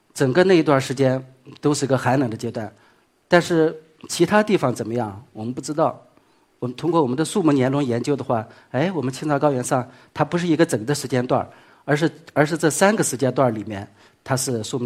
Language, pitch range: Chinese, 120-160 Hz